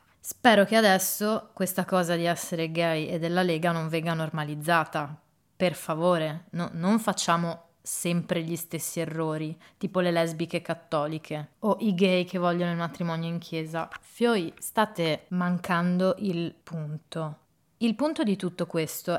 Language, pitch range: Italian, 165-195 Hz